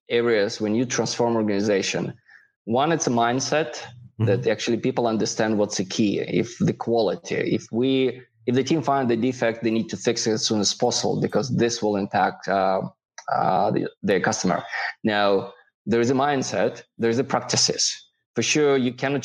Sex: male